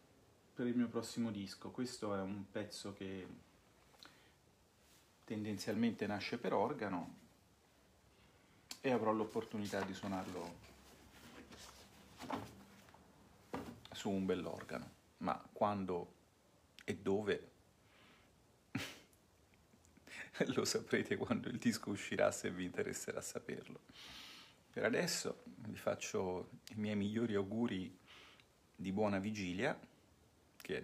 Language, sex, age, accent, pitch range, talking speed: Italian, male, 40-59, native, 95-110 Hz, 90 wpm